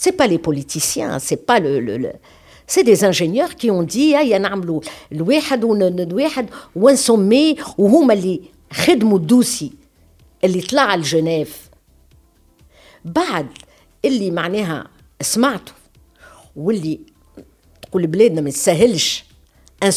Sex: female